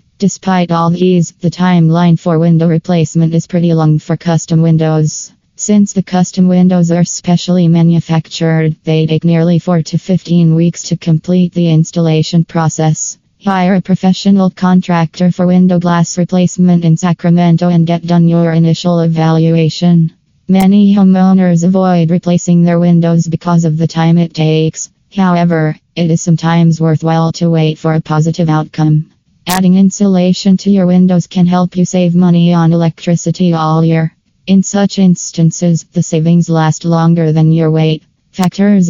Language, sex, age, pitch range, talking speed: English, female, 20-39, 165-180 Hz, 150 wpm